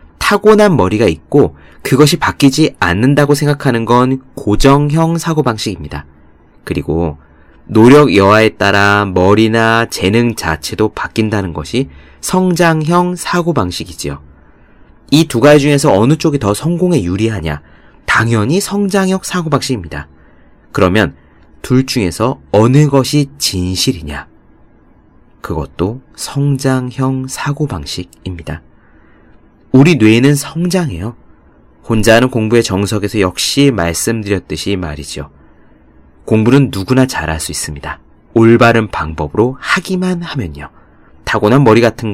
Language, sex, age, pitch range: Korean, male, 30-49, 80-140 Hz